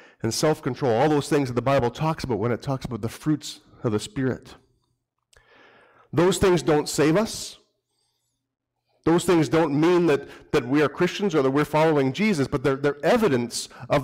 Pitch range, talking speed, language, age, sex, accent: 130-160 Hz, 185 wpm, English, 40-59, male, American